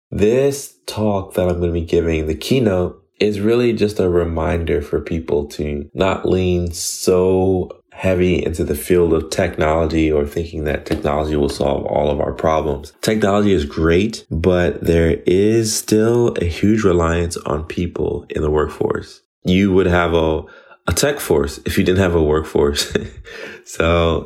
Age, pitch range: 20-39, 80-95 Hz